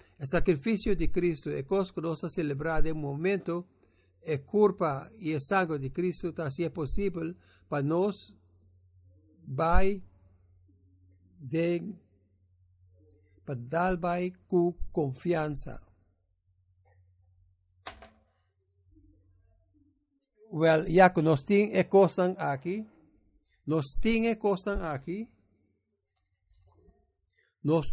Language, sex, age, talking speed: English, male, 60-79, 85 wpm